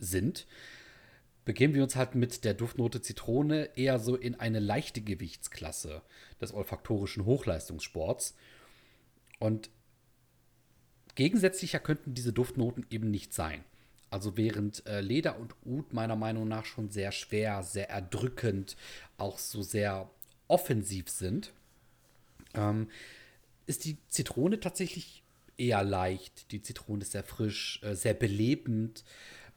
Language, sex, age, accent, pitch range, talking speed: German, male, 40-59, German, 100-125 Hz, 120 wpm